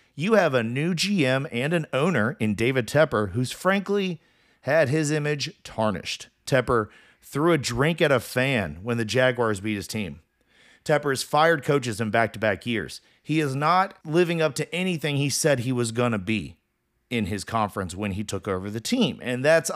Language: English